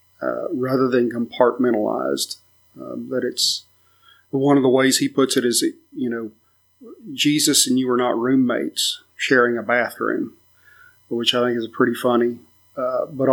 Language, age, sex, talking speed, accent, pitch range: English, 40-59, male, 160 wpm, American, 110-135 Hz